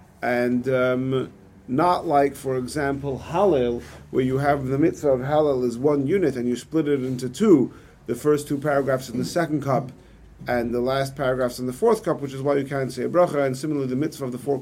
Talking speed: 220 wpm